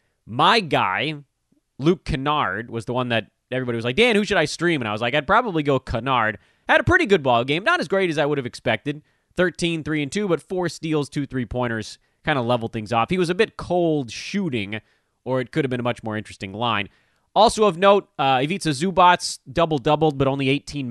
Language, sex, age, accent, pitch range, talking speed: English, male, 30-49, American, 115-160 Hz, 215 wpm